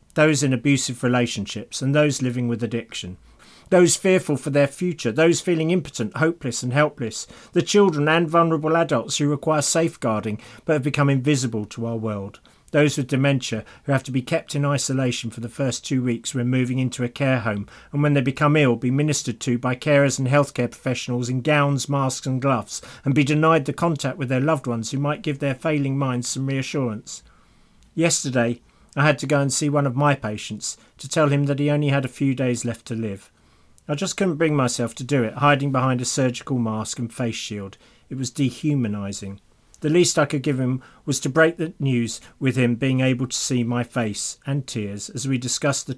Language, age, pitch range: English, 40-59, 120-145 Hz